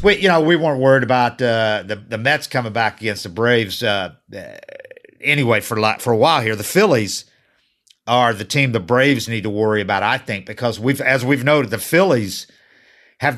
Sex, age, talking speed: male, 50-69, 200 wpm